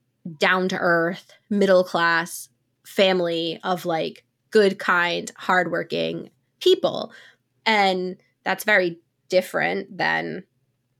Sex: female